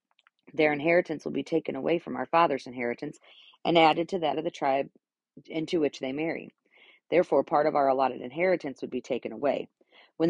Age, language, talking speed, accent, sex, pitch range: 40-59, English, 185 wpm, American, female, 135-165 Hz